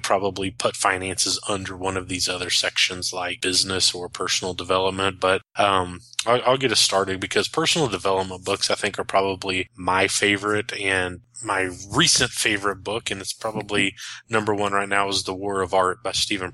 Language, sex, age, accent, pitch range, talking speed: English, male, 20-39, American, 95-110 Hz, 180 wpm